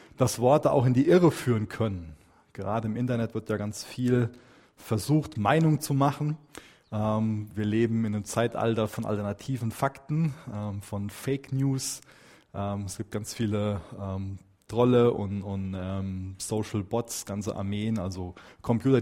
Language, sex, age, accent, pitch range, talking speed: German, male, 20-39, German, 105-130 Hz, 150 wpm